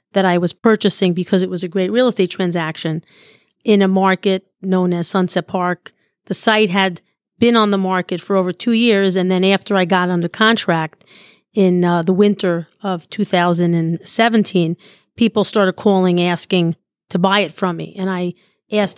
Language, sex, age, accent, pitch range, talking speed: English, female, 40-59, American, 180-210 Hz, 175 wpm